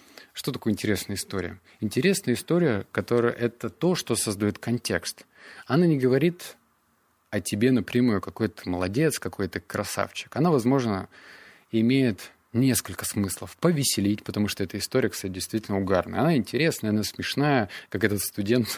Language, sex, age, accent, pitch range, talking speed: Russian, male, 20-39, native, 100-125 Hz, 135 wpm